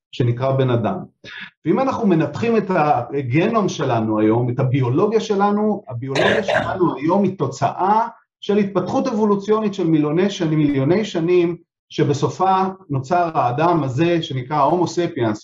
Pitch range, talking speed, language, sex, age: 145-205 Hz, 115 wpm, Hebrew, male, 40-59